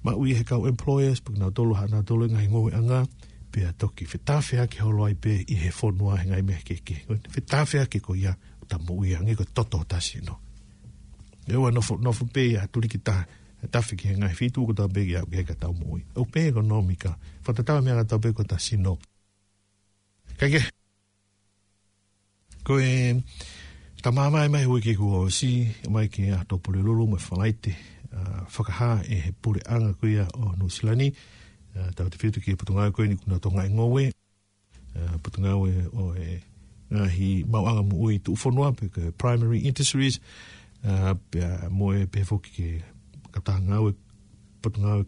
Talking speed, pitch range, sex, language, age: 65 wpm, 95-115 Hz, male, English, 60-79